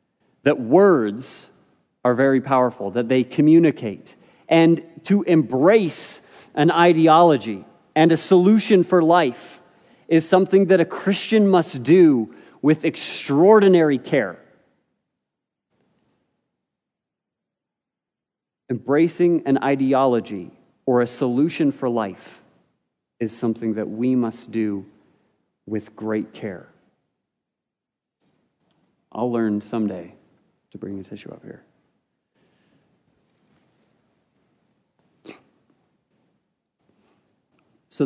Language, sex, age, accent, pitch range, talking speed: English, male, 40-59, American, 120-155 Hz, 85 wpm